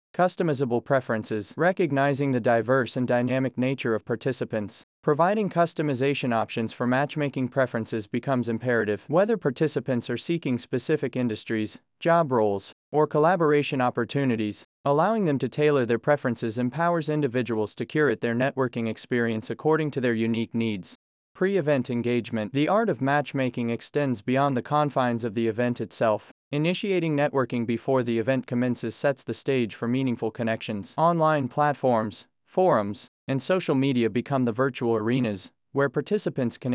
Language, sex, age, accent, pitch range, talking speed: English, male, 30-49, American, 115-145 Hz, 140 wpm